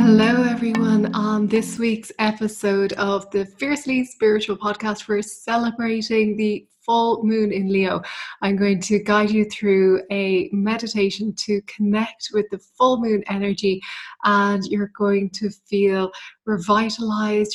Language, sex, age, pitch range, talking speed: English, female, 20-39, 195-220 Hz, 135 wpm